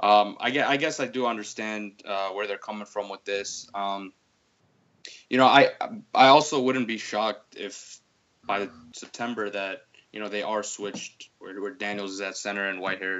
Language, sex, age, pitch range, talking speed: English, male, 20-39, 100-120 Hz, 180 wpm